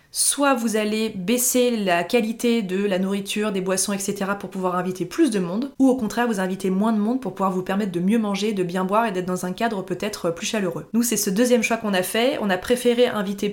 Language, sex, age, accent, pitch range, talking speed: French, female, 20-39, French, 195-235 Hz, 250 wpm